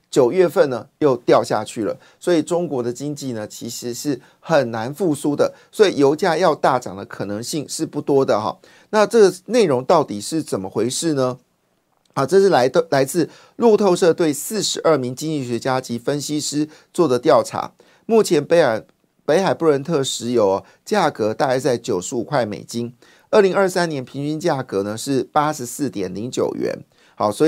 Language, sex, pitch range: Chinese, male, 120-160 Hz